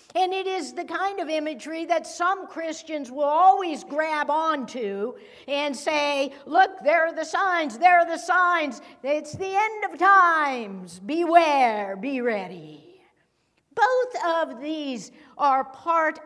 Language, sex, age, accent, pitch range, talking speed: English, female, 60-79, American, 260-335 Hz, 140 wpm